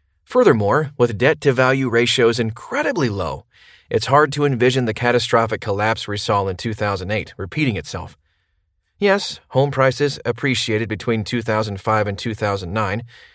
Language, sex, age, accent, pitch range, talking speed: English, male, 30-49, American, 110-150 Hz, 120 wpm